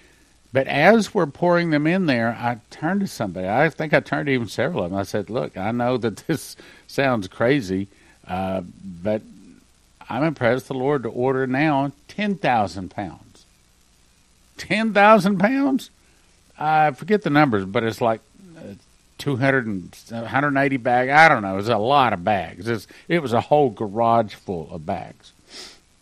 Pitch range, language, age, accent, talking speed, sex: 100-145 Hz, English, 50-69, American, 155 wpm, male